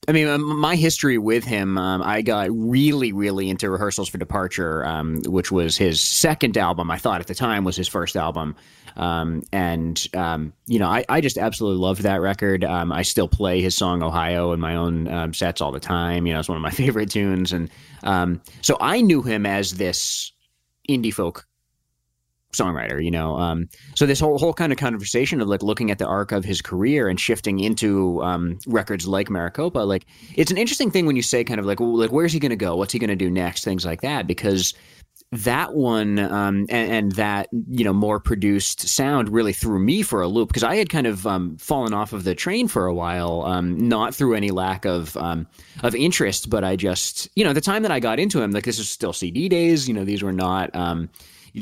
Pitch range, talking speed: 90-115 Hz, 225 wpm